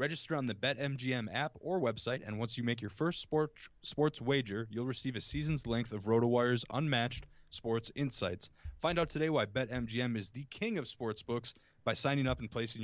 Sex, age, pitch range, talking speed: male, 20-39, 110-135 Hz, 195 wpm